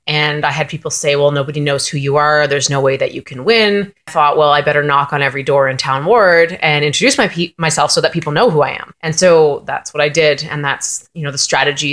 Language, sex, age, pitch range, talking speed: English, female, 20-39, 145-170 Hz, 270 wpm